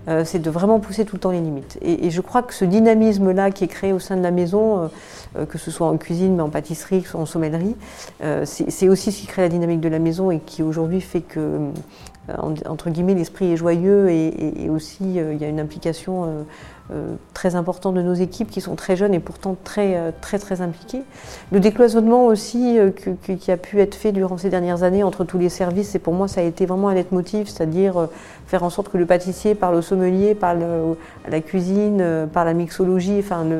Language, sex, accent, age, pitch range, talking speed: French, female, French, 40-59, 170-200 Hz, 245 wpm